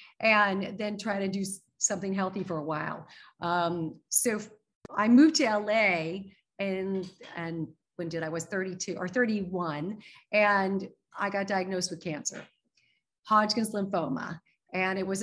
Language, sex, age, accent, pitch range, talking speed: English, female, 40-59, American, 175-225 Hz, 140 wpm